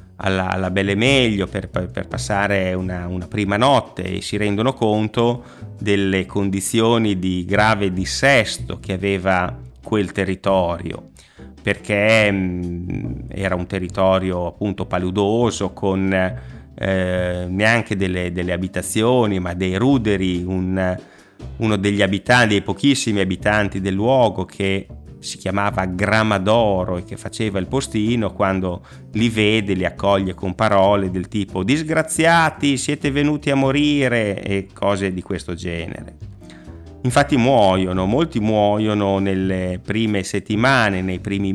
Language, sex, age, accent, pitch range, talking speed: Italian, male, 30-49, native, 95-110 Hz, 125 wpm